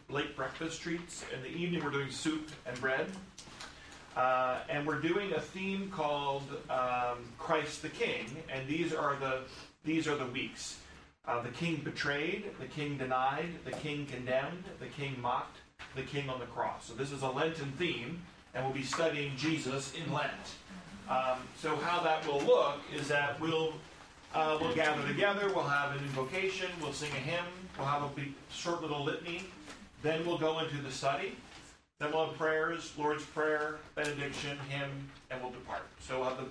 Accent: American